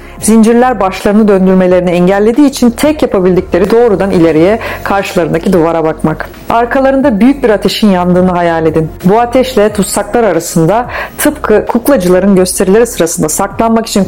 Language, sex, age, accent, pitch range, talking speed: Turkish, female, 40-59, native, 180-240 Hz, 125 wpm